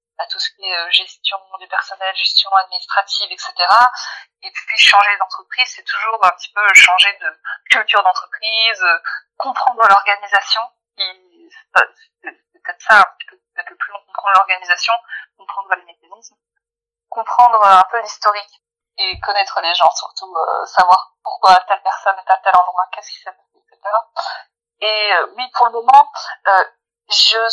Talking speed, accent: 155 wpm, French